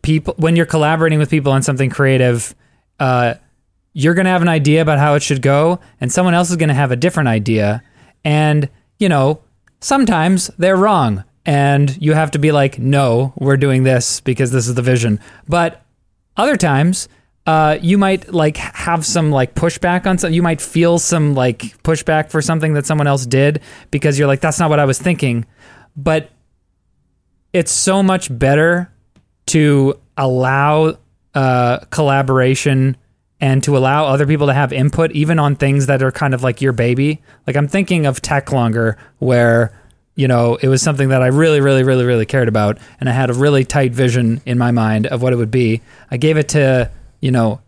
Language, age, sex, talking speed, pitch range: English, 20-39, male, 195 wpm, 125-155 Hz